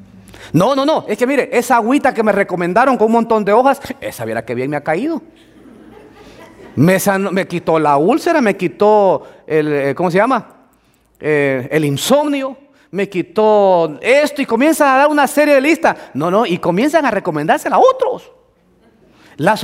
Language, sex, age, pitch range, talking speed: Spanish, male, 30-49, 175-285 Hz, 175 wpm